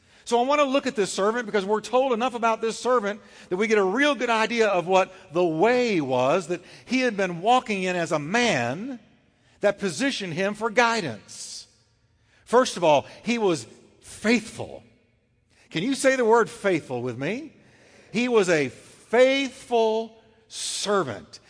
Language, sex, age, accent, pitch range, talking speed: English, male, 50-69, American, 150-210 Hz, 165 wpm